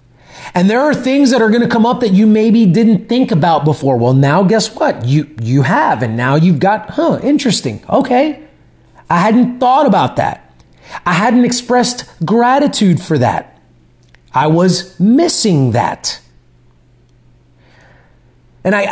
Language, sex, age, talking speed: English, male, 30-49, 150 wpm